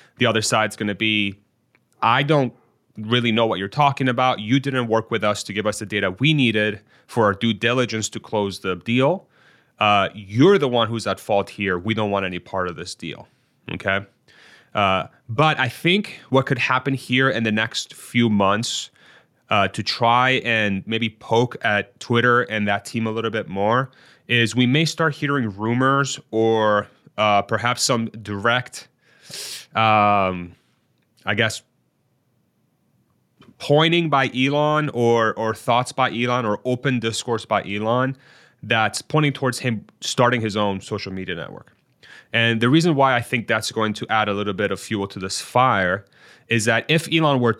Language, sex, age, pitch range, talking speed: English, male, 30-49, 105-130 Hz, 175 wpm